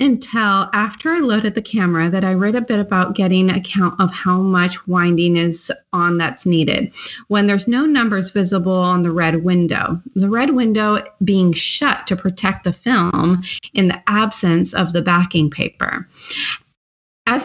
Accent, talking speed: American, 170 wpm